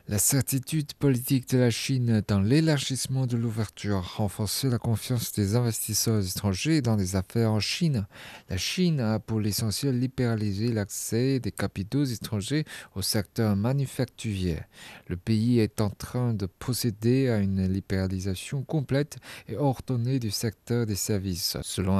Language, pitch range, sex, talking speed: French, 100-130 Hz, male, 145 wpm